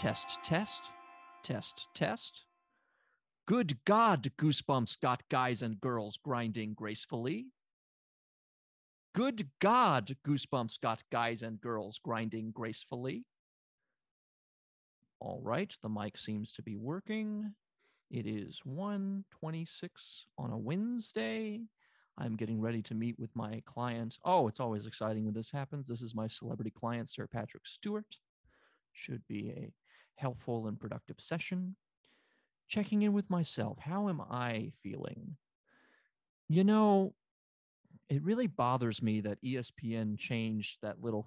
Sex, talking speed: male, 125 wpm